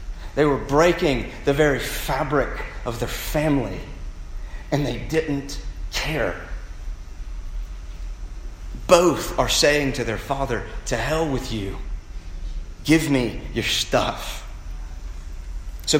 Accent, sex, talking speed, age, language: American, male, 105 wpm, 30-49, English